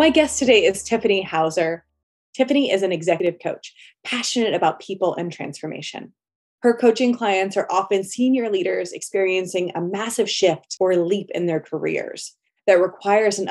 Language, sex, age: English, female, 20-39